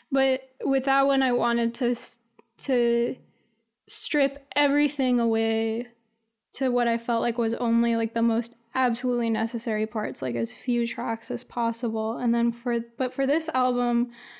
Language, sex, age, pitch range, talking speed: English, female, 10-29, 230-255 Hz, 160 wpm